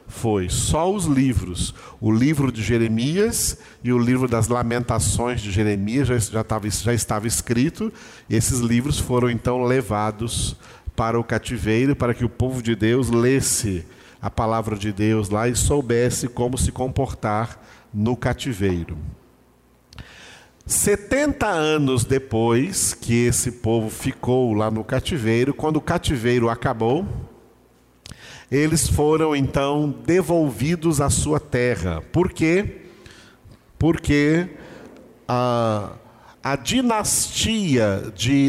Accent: Brazilian